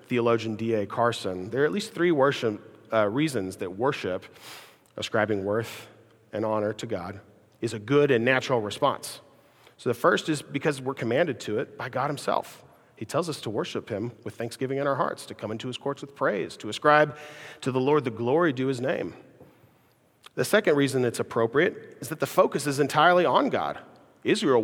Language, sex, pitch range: English, male, 110-140 Hz